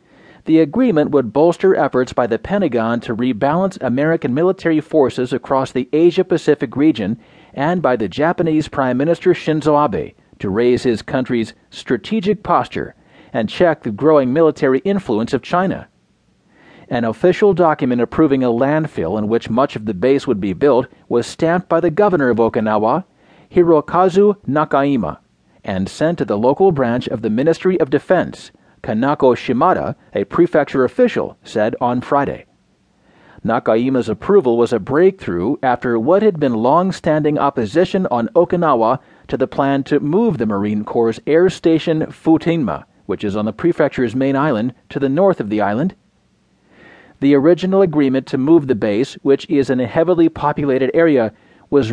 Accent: American